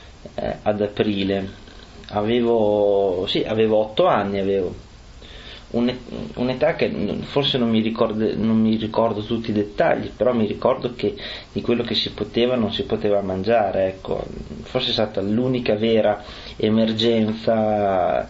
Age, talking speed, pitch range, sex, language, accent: 30-49, 130 wpm, 100-120 Hz, male, Italian, native